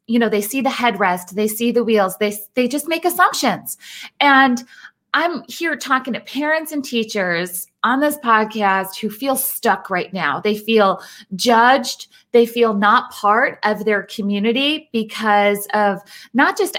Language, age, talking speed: English, 30-49, 160 wpm